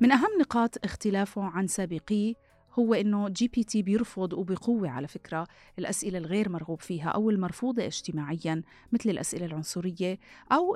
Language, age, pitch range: Arabic, 30-49, 165-210 Hz